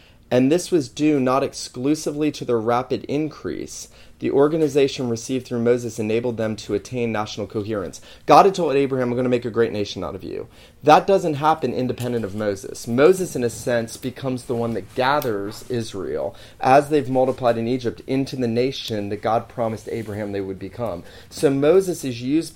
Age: 30-49